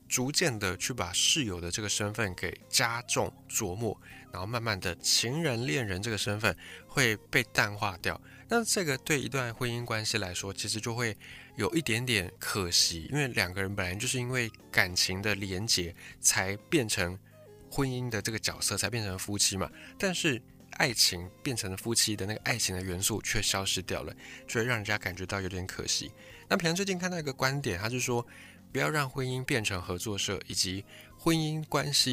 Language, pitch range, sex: Chinese, 100-130 Hz, male